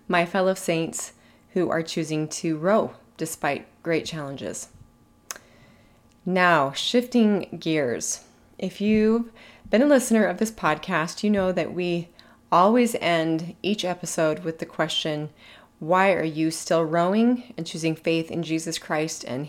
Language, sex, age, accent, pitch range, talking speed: English, female, 30-49, American, 160-215 Hz, 140 wpm